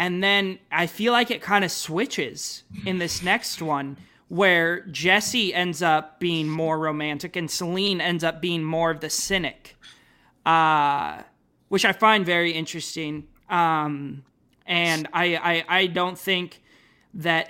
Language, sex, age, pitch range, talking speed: English, male, 20-39, 155-185 Hz, 145 wpm